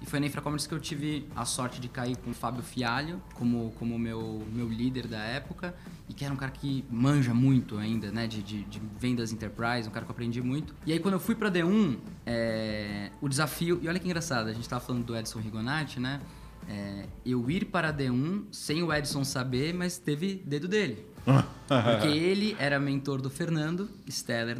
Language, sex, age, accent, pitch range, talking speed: Portuguese, male, 20-39, Brazilian, 120-155 Hz, 210 wpm